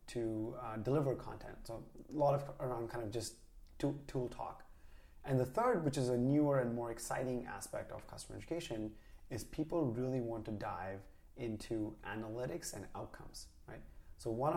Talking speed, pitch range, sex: 170 wpm, 110-135 Hz, male